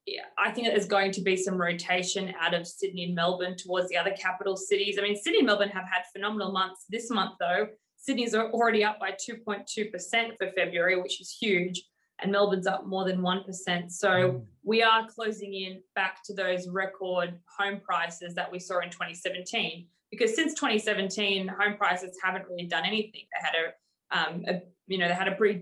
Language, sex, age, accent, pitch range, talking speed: English, female, 20-39, Australian, 180-210 Hz, 195 wpm